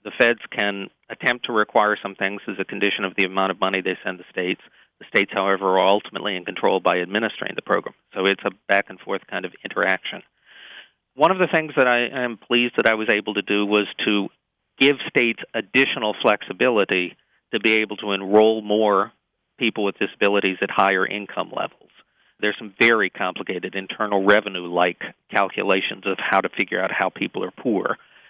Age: 40-59